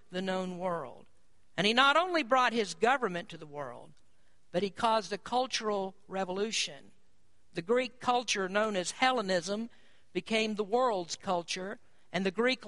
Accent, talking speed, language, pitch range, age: American, 150 wpm, English, 190-245 Hz, 50-69